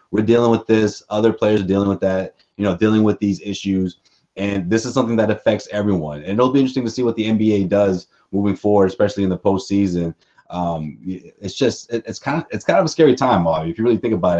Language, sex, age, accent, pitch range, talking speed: English, male, 30-49, American, 95-110 Hz, 240 wpm